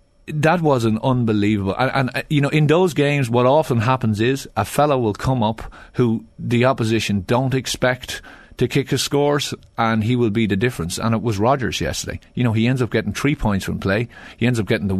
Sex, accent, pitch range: male, Irish, 95-125 Hz